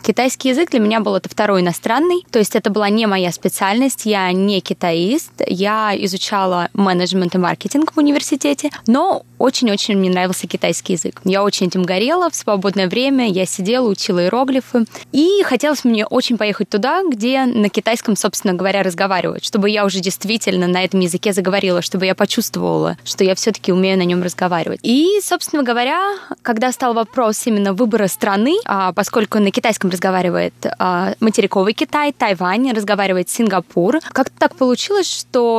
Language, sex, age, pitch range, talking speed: Russian, female, 20-39, 195-255 Hz, 160 wpm